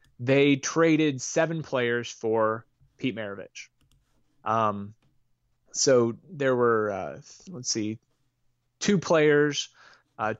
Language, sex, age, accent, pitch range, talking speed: English, male, 20-39, American, 115-140 Hz, 100 wpm